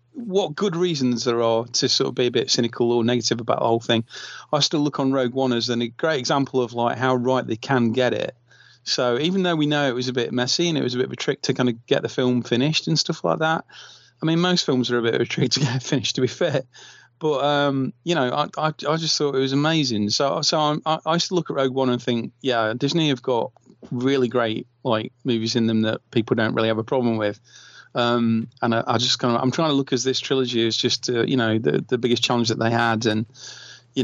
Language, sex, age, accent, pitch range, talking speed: English, male, 30-49, British, 120-140 Hz, 265 wpm